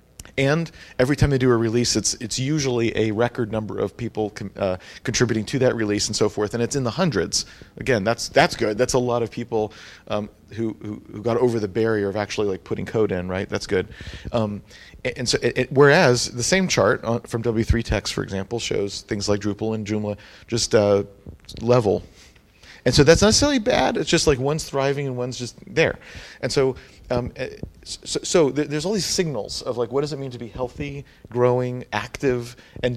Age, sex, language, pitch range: 40-59, male, English, 105-135 Hz